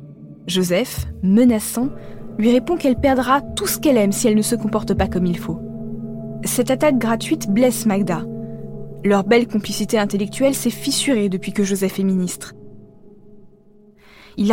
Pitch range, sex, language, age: 190-250 Hz, female, French, 20-39